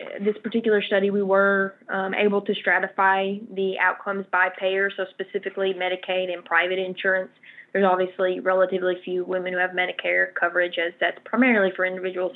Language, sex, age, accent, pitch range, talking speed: English, female, 10-29, American, 180-200 Hz, 160 wpm